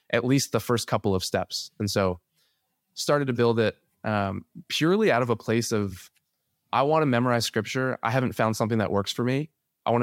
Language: English